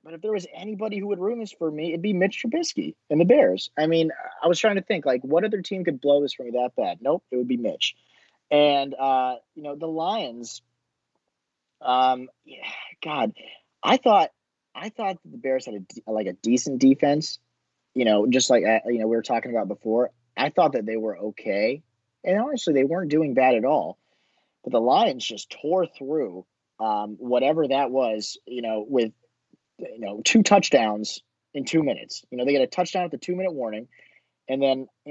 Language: English